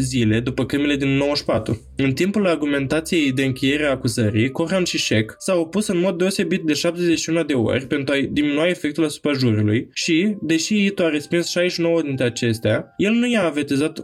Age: 20-39